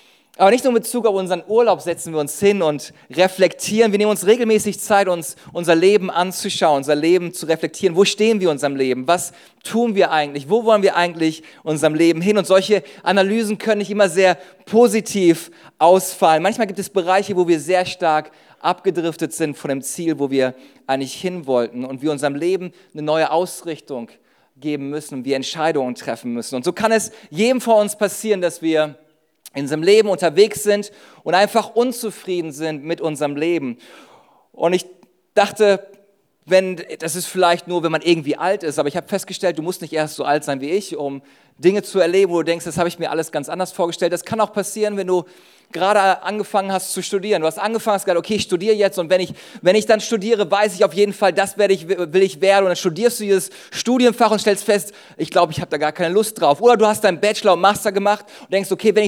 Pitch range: 165-210 Hz